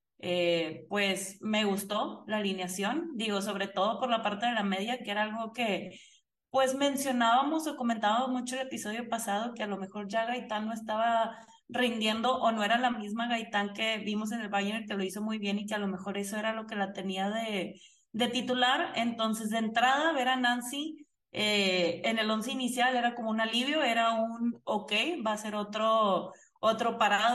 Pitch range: 205-250 Hz